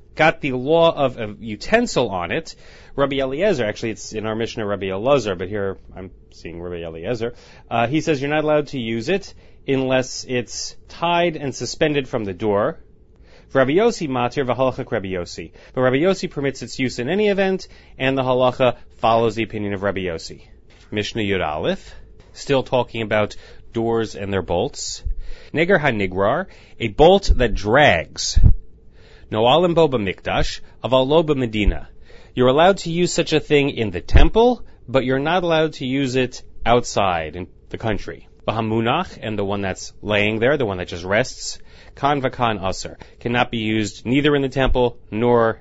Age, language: 30-49, English